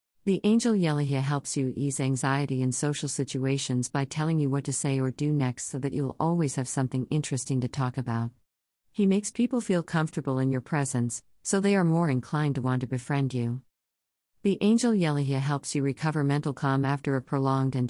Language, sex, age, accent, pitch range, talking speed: English, female, 50-69, American, 130-155 Hz, 200 wpm